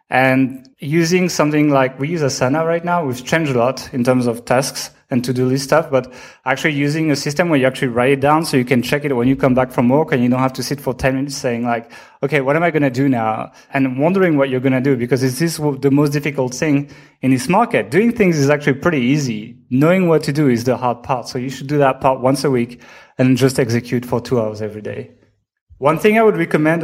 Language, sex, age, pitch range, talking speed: English, male, 30-49, 130-155 Hz, 255 wpm